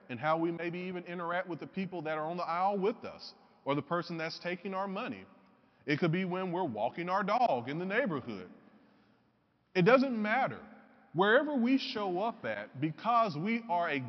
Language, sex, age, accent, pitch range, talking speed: English, male, 30-49, American, 170-225 Hz, 195 wpm